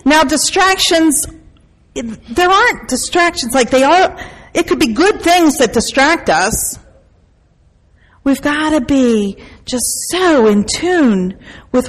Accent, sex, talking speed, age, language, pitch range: American, female, 125 wpm, 40-59, English, 215-285 Hz